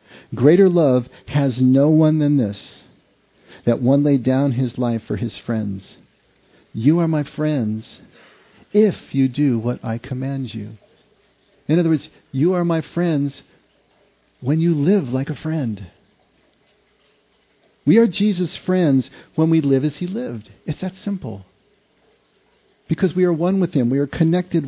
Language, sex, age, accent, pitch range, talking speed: English, male, 50-69, American, 120-165 Hz, 150 wpm